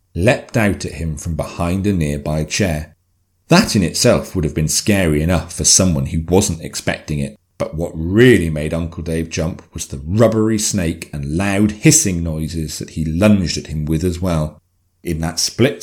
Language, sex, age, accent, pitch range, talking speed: English, male, 40-59, British, 85-110 Hz, 185 wpm